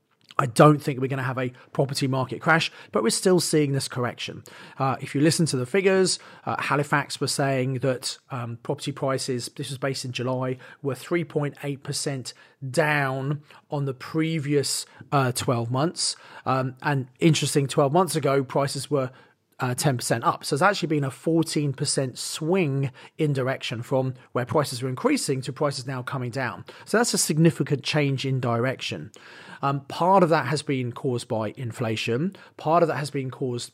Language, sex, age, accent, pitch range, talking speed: English, male, 30-49, British, 130-155 Hz, 175 wpm